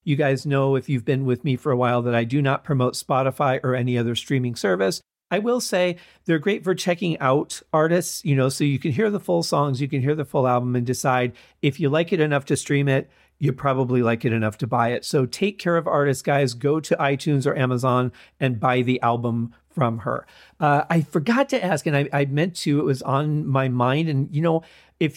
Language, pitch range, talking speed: English, 130-165 Hz, 240 wpm